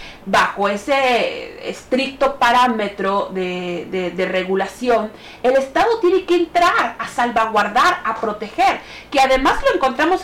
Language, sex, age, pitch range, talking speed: Spanish, female, 30-49, 200-260 Hz, 125 wpm